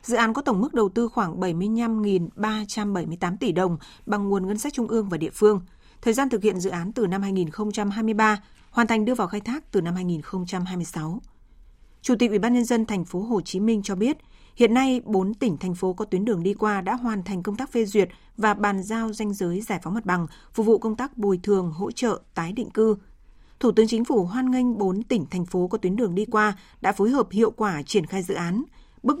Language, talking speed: Vietnamese, 235 wpm